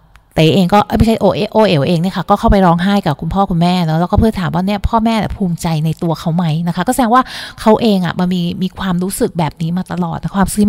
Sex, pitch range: female, 165-210 Hz